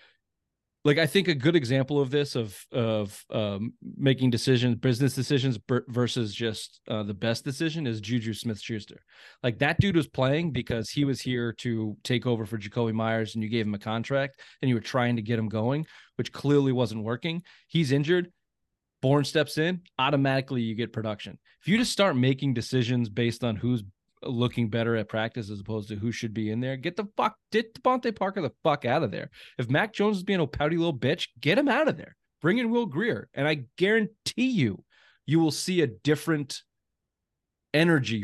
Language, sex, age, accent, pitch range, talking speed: English, male, 20-39, American, 115-145 Hz, 200 wpm